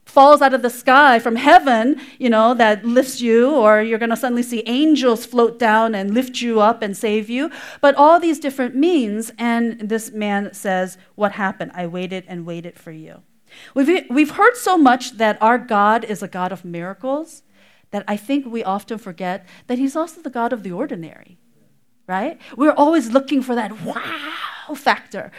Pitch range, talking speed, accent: 185-270 Hz, 190 wpm, American